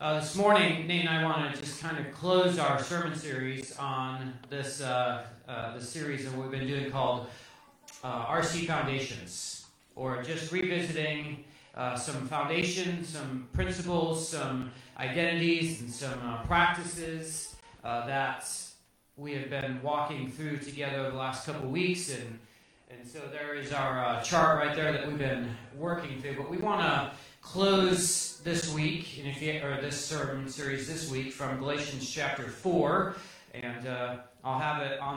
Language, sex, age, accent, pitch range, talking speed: English, male, 40-59, American, 130-160 Hz, 160 wpm